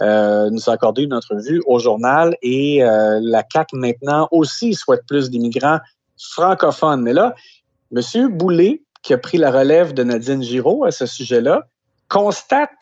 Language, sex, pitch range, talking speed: French, male, 120-160 Hz, 160 wpm